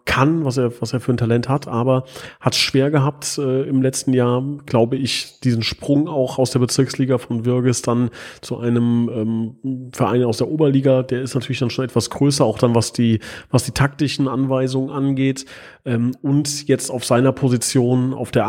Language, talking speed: German, 190 wpm